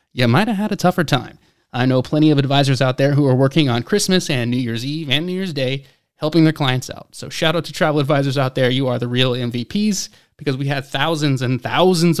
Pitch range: 125-165 Hz